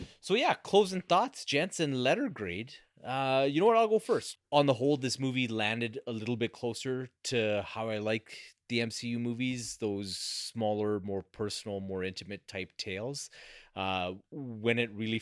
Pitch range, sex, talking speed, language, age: 90-115 Hz, male, 175 wpm, English, 30-49